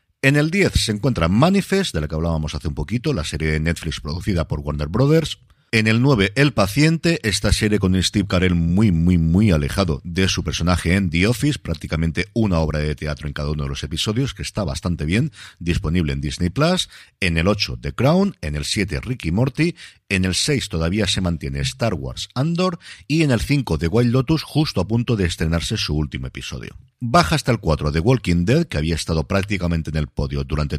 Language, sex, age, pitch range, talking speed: Spanish, male, 50-69, 80-115 Hz, 210 wpm